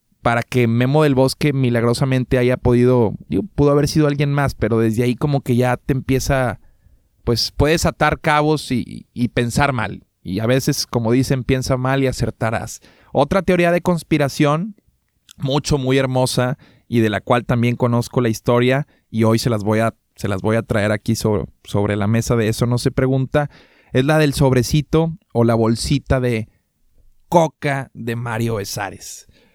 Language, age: Spanish, 20-39